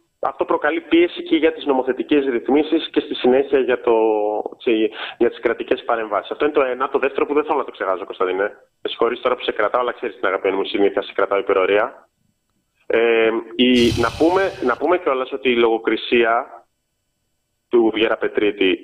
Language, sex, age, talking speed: Greek, male, 30-49, 180 wpm